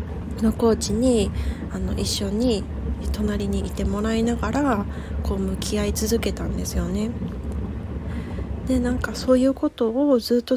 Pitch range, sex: 180-225 Hz, female